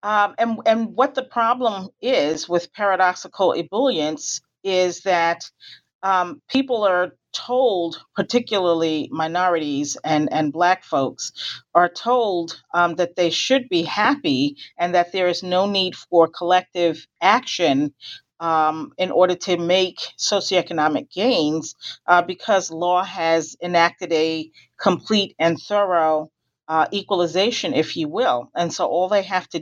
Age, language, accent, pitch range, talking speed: 40-59, English, American, 165-200 Hz, 135 wpm